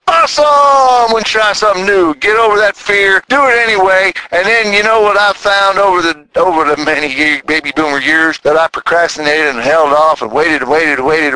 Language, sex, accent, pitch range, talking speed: English, male, American, 170-250 Hz, 220 wpm